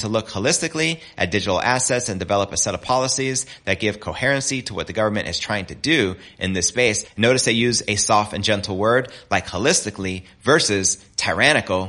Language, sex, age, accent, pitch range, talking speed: English, male, 30-49, American, 95-120 Hz, 190 wpm